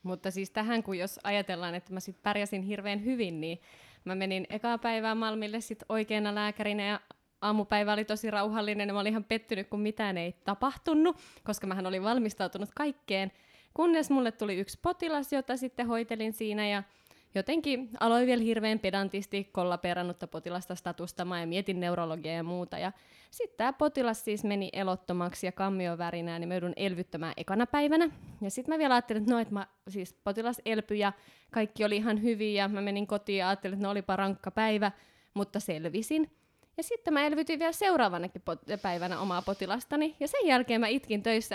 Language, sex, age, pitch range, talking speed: Finnish, female, 20-39, 195-265 Hz, 175 wpm